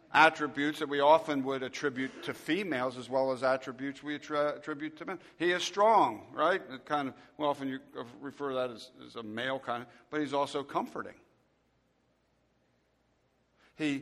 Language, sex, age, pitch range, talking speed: English, male, 50-69, 135-160 Hz, 170 wpm